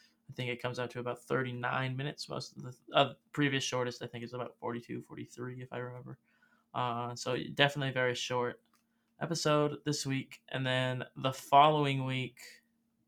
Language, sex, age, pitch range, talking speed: English, male, 20-39, 125-150 Hz, 175 wpm